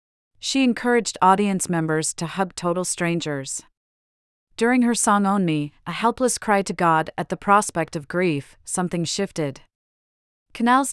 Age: 40-59